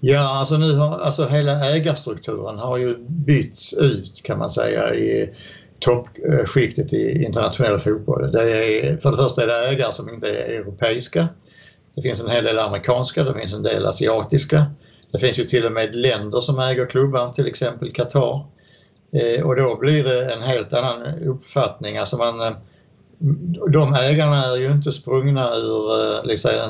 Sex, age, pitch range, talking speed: male, 60-79, 115-145 Hz, 165 wpm